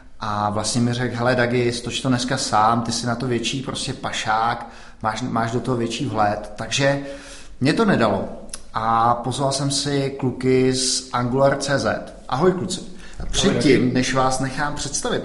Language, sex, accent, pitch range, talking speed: Czech, male, native, 120-140 Hz, 170 wpm